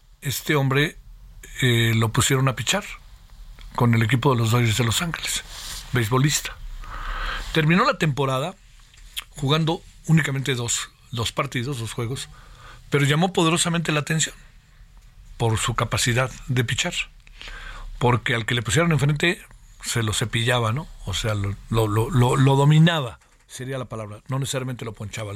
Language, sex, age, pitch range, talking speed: Spanish, male, 50-69, 115-145 Hz, 145 wpm